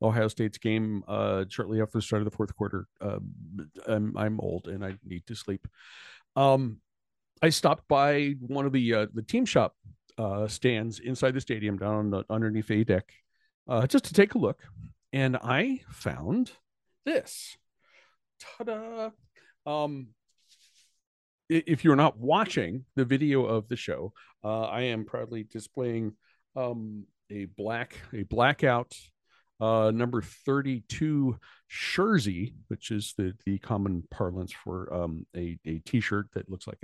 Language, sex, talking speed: English, male, 150 wpm